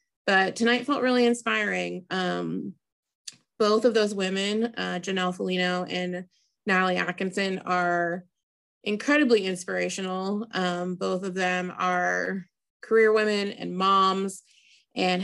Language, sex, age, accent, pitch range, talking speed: English, female, 20-39, American, 180-200 Hz, 115 wpm